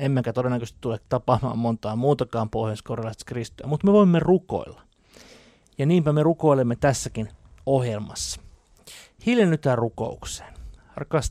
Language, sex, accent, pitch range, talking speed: Finnish, male, native, 110-145 Hz, 115 wpm